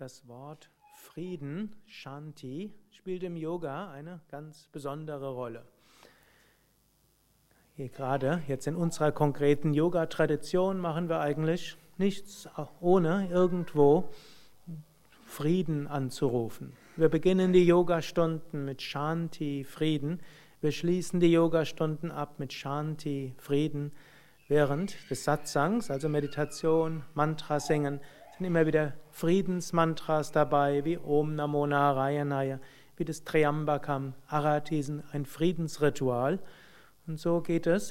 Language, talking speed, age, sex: German, 105 wpm, 40-59, male